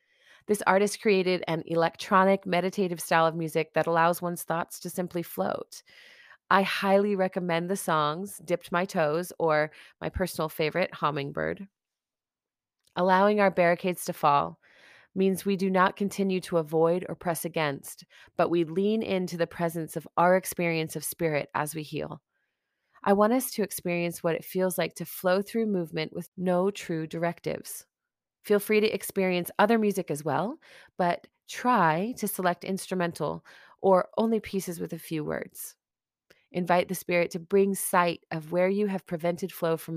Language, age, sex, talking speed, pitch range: English, 30-49, female, 160 wpm, 165-195 Hz